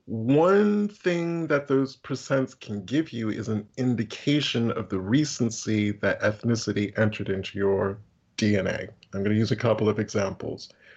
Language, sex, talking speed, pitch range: English, male, 155 wpm, 105-125 Hz